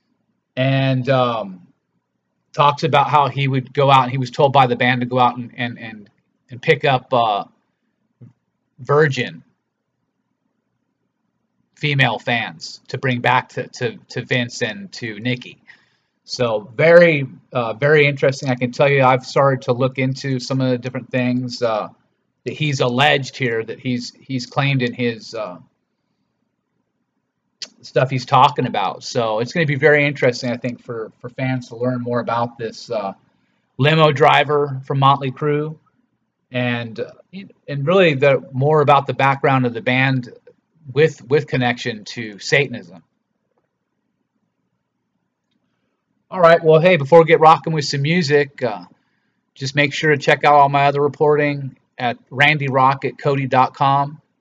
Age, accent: 30-49, American